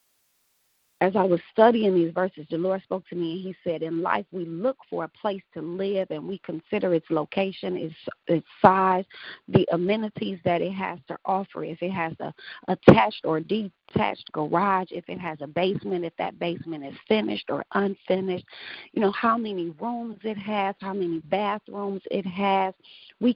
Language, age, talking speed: English, 40-59, 180 wpm